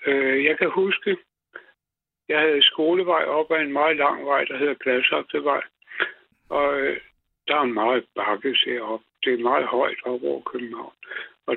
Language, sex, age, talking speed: Danish, male, 60-79, 150 wpm